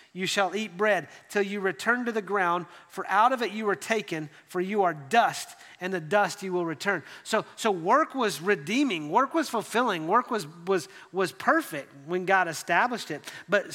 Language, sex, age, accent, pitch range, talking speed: English, male, 40-59, American, 195-240 Hz, 195 wpm